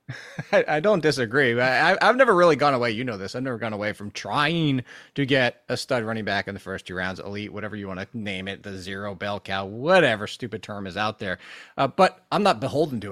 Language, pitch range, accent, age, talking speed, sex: English, 110-150 Hz, American, 30-49, 240 wpm, male